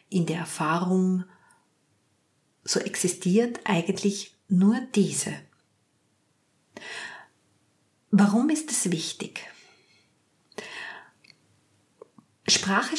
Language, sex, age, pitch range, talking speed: German, female, 50-69, 175-215 Hz, 60 wpm